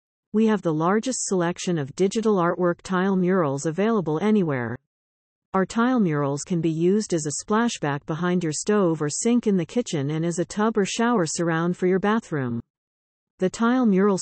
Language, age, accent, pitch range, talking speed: English, 50-69, American, 155-205 Hz, 175 wpm